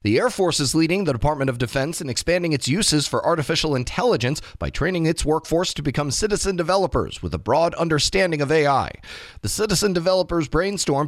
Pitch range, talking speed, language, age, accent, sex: 120-165 Hz, 185 wpm, English, 30-49, American, male